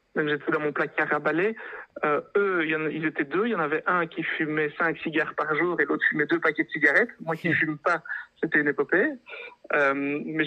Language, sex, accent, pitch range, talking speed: French, male, French, 150-190 Hz, 245 wpm